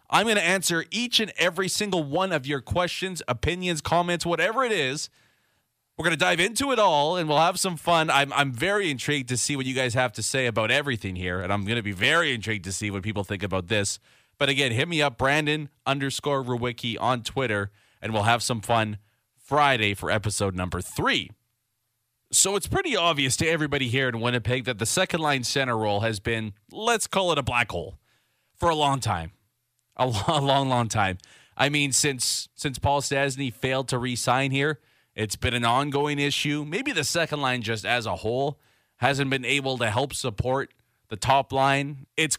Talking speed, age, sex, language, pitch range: 200 wpm, 30-49, male, English, 115-150 Hz